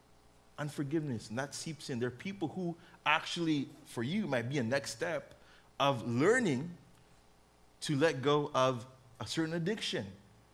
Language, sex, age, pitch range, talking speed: English, male, 20-39, 120-185 Hz, 150 wpm